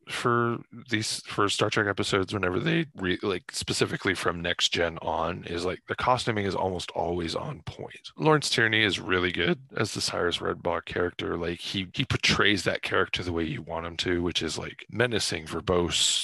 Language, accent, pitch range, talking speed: English, American, 90-130 Hz, 190 wpm